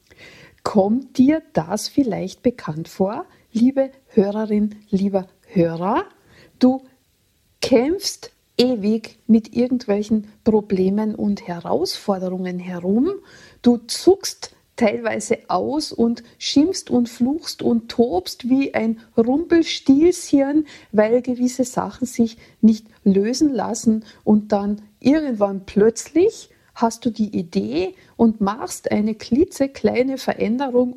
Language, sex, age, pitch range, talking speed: German, female, 50-69, 200-255 Hz, 100 wpm